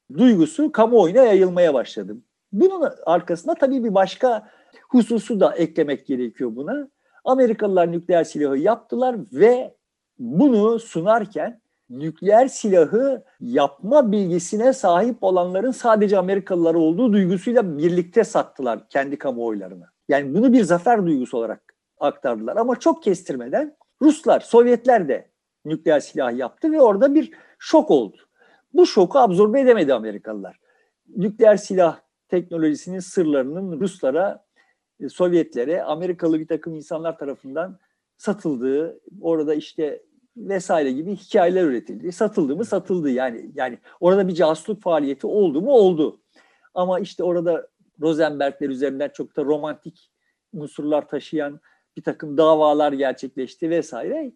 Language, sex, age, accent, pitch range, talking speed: Turkish, male, 50-69, native, 155-245 Hz, 115 wpm